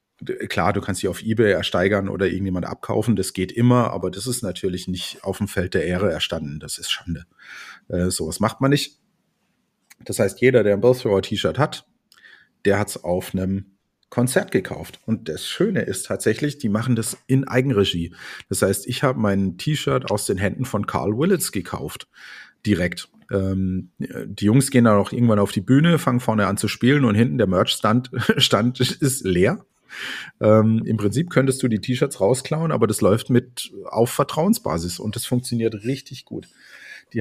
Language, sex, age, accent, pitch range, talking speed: German, male, 40-59, German, 100-125 Hz, 180 wpm